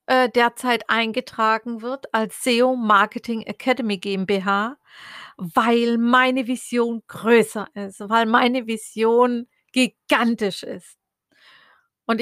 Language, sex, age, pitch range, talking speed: German, female, 50-69, 215-255 Hz, 95 wpm